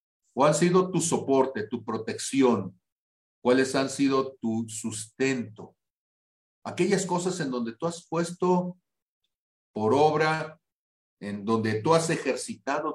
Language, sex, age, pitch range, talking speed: Spanish, male, 50-69, 120-175 Hz, 120 wpm